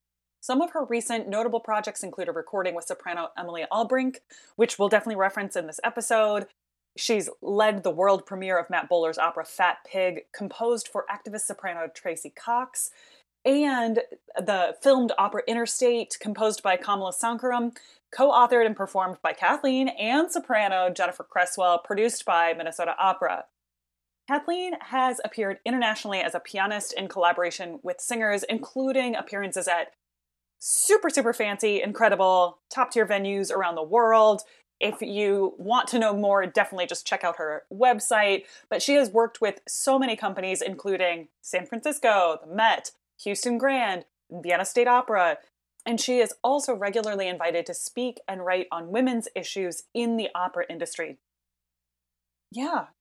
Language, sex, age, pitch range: English, female, 20-39, 180-240 Hz